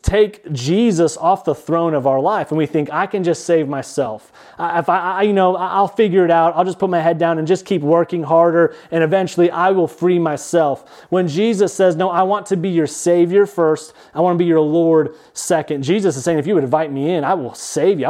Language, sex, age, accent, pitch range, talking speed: English, male, 30-49, American, 150-185 Hz, 250 wpm